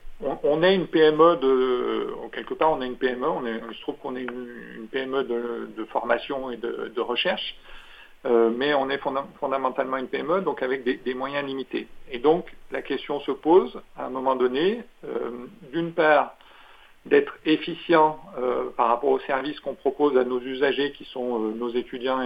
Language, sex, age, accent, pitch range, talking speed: French, male, 50-69, French, 125-160 Hz, 195 wpm